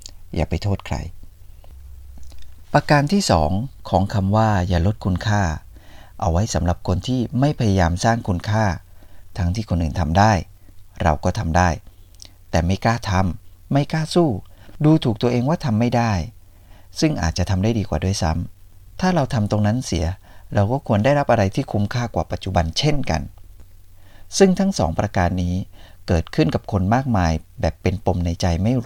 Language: Thai